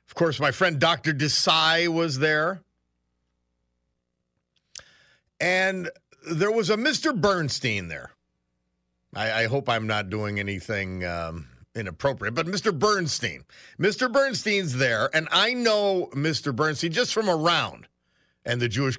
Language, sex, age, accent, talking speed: English, male, 50-69, American, 130 wpm